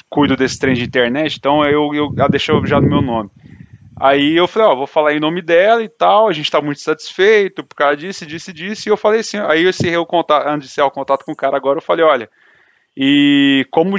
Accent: Brazilian